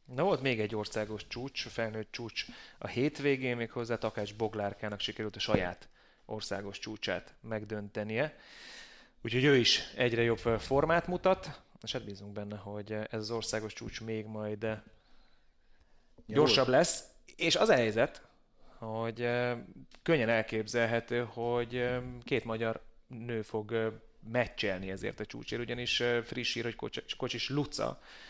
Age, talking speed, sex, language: 30-49, 130 wpm, male, Hungarian